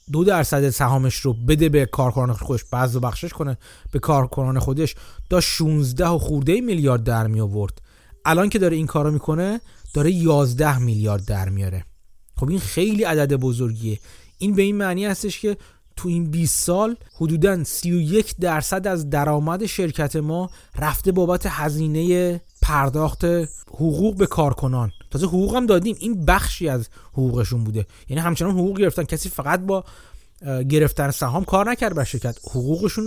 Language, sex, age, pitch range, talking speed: Persian, male, 30-49, 130-180 Hz, 150 wpm